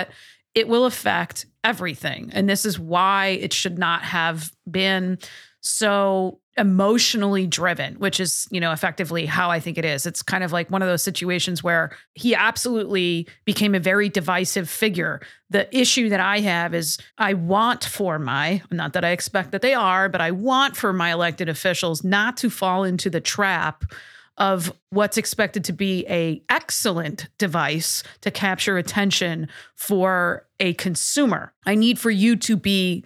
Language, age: English, 40-59